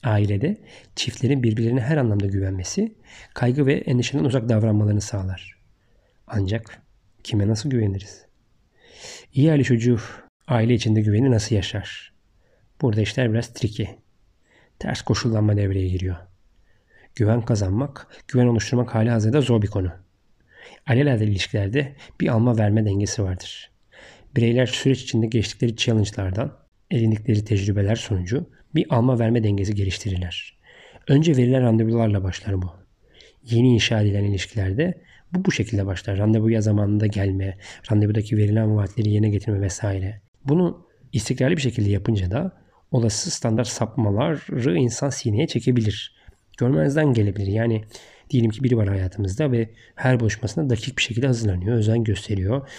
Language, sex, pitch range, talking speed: Turkish, male, 100-125 Hz, 130 wpm